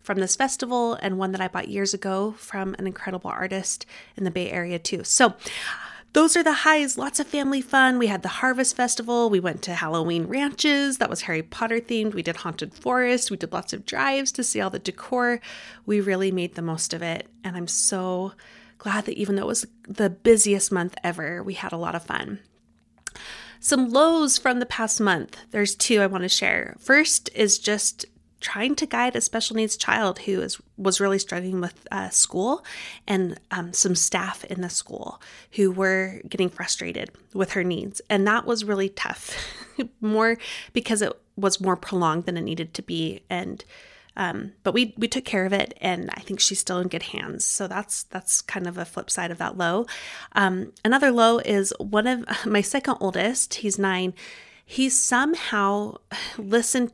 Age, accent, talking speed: 30-49, American, 195 wpm